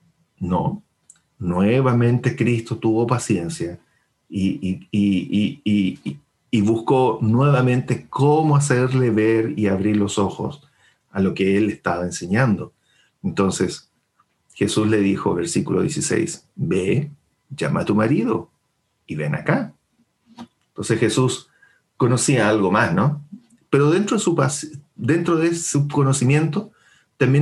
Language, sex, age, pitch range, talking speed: English, male, 40-59, 100-145 Hz, 105 wpm